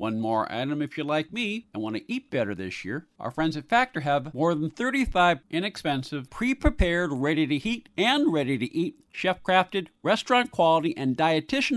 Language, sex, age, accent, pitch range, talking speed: English, male, 50-69, American, 135-180 Hz, 160 wpm